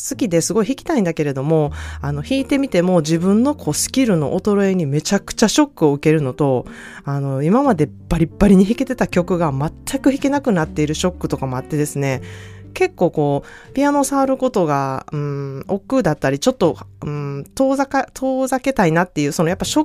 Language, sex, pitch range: Japanese, female, 150-235 Hz